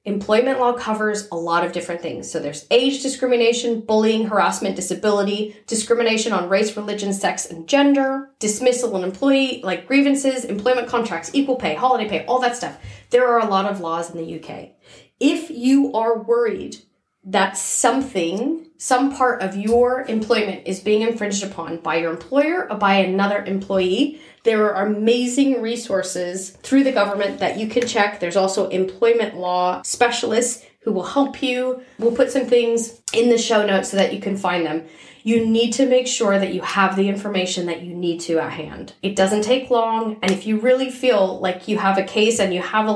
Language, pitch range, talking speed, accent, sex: English, 190-240 Hz, 185 wpm, American, female